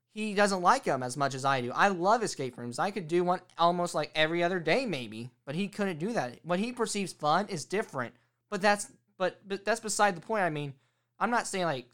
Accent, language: American, English